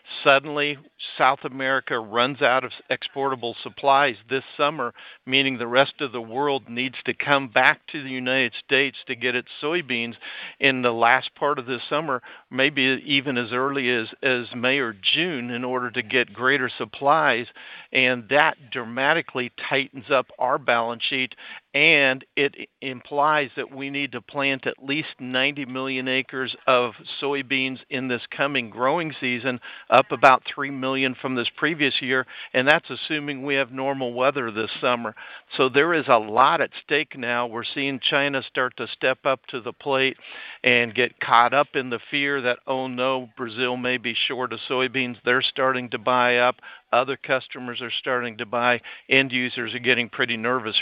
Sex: male